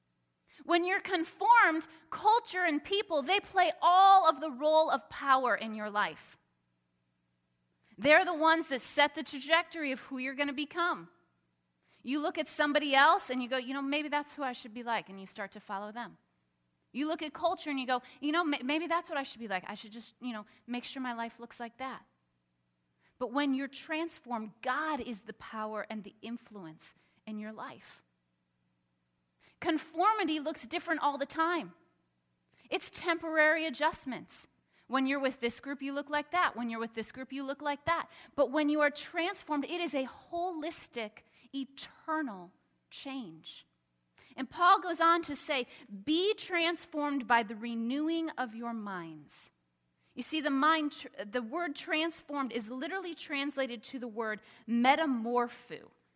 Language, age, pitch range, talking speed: English, 30-49, 215-315 Hz, 175 wpm